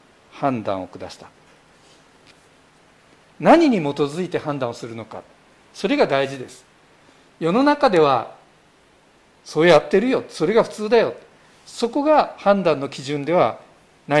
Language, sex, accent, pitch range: Japanese, male, native, 150-225 Hz